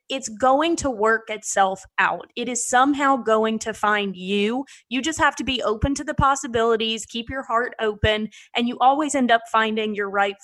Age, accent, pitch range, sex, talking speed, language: 20-39, American, 205-250 Hz, female, 195 wpm, English